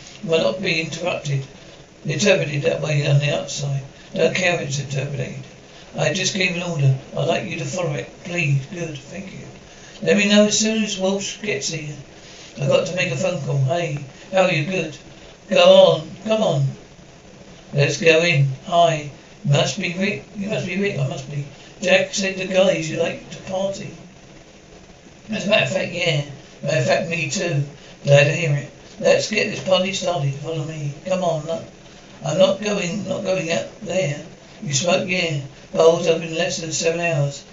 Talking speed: 190 wpm